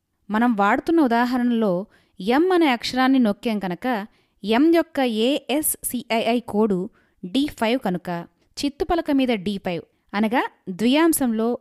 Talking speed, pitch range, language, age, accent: 100 wpm, 205-275 Hz, Telugu, 20-39, native